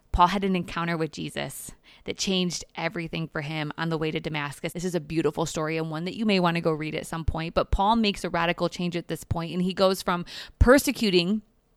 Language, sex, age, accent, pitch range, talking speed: English, female, 20-39, American, 170-210 Hz, 240 wpm